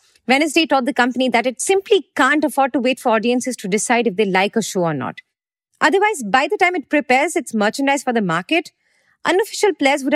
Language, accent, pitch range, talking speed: English, Indian, 225-300 Hz, 215 wpm